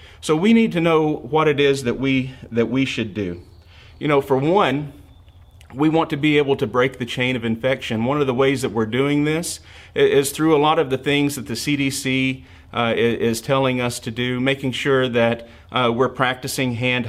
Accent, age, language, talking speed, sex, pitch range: American, 40-59, English, 210 wpm, male, 115-140 Hz